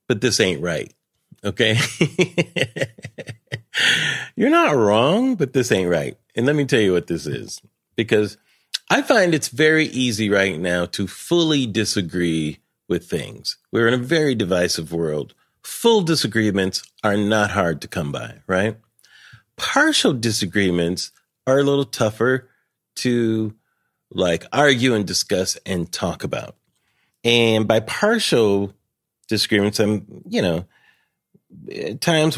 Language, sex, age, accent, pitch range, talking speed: English, male, 40-59, American, 95-135 Hz, 130 wpm